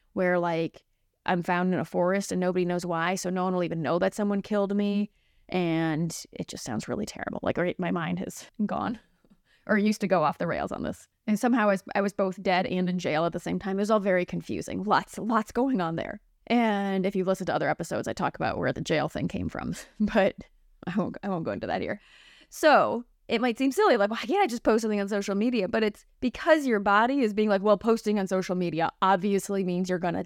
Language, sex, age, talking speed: English, female, 20-39, 240 wpm